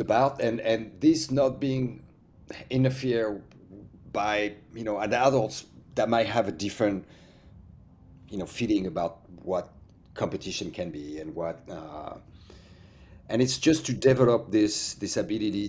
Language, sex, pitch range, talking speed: English, male, 100-130 Hz, 135 wpm